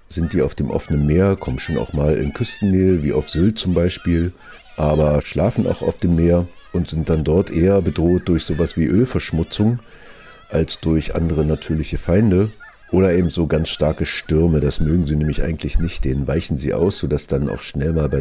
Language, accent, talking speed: German, German, 200 wpm